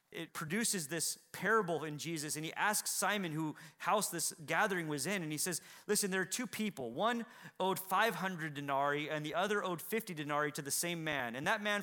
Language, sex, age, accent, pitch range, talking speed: English, male, 30-49, American, 145-185 Hz, 210 wpm